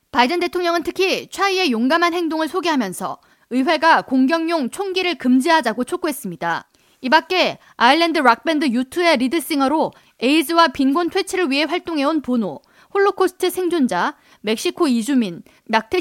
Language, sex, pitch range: Korean, female, 240-330 Hz